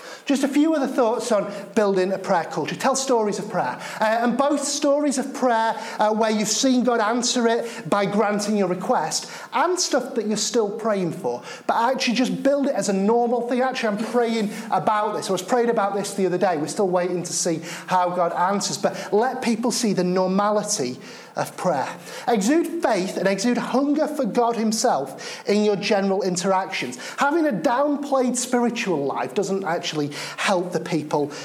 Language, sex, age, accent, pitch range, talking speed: English, male, 30-49, British, 195-255 Hz, 185 wpm